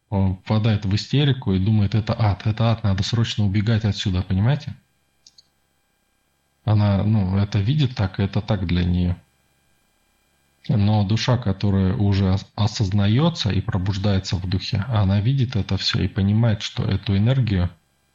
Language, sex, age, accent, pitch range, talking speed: Russian, male, 20-39, native, 90-105 Hz, 140 wpm